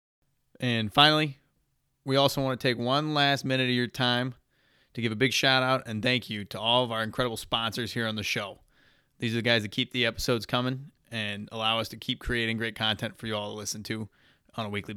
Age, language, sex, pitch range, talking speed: 20-39, English, male, 105-130 Hz, 235 wpm